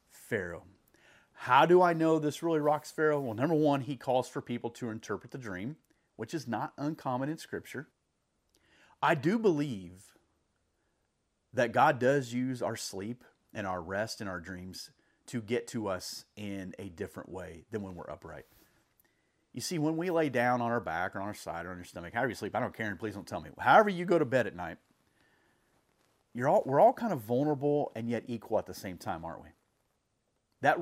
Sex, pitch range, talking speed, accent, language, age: male, 110-160 Hz, 205 wpm, American, English, 40-59